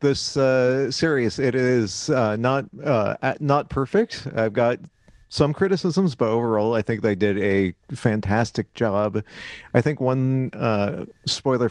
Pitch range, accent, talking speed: 105-125 Hz, American, 150 wpm